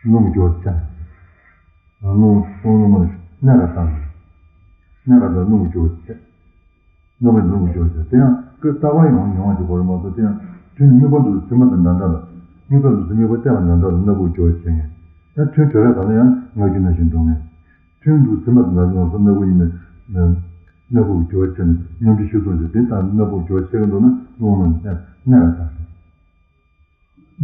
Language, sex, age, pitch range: Italian, male, 60-79, 85-120 Hz